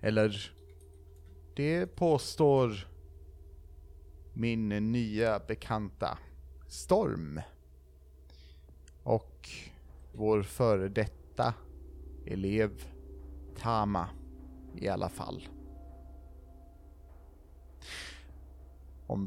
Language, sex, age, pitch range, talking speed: Swedish, male, 30-49, 80-115 Hz, 55 wpm